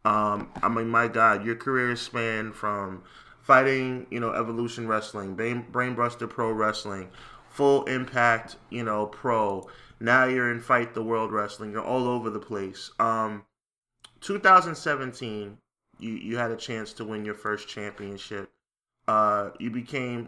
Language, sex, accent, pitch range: English, male, American, 105-120 Hz